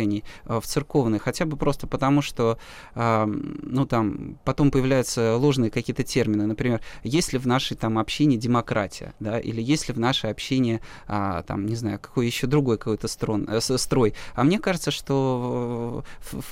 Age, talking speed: 20-39, 145 wpm